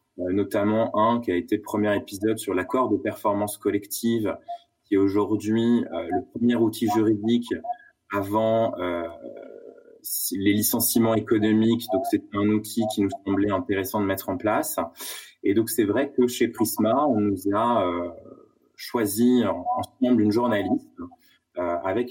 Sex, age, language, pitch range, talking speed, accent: male, 20-39, French, 105-135 Hz, 140 wpm, French